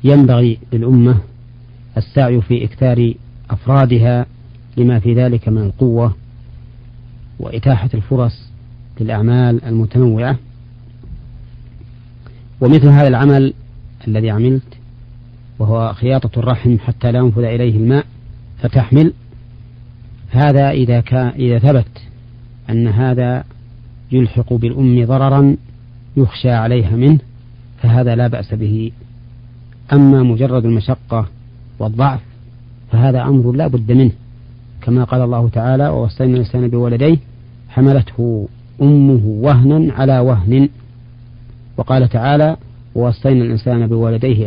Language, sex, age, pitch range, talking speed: Arabic, male, 40-59, 120-130 Hz, 95 wpm